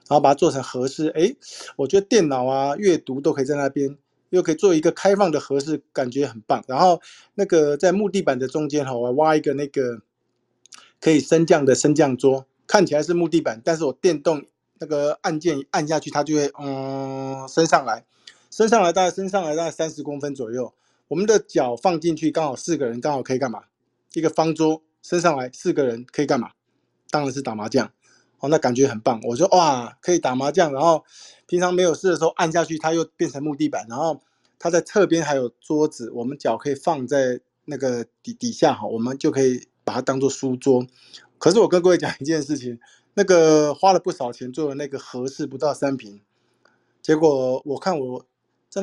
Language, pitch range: Chinese, 130-170 Hz